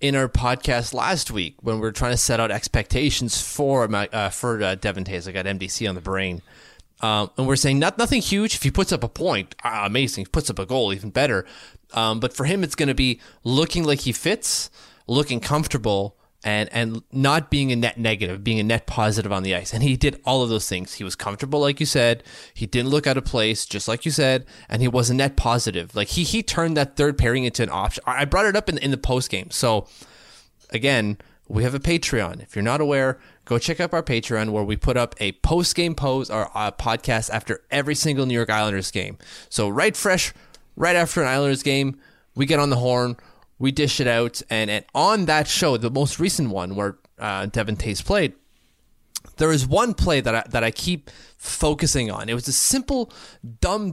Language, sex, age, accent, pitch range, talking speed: English, male, 20-39, American, 110-150 Hz, 225 wpm